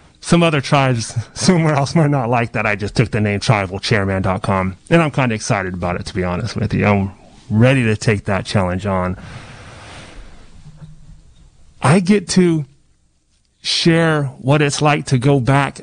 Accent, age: American, 30-49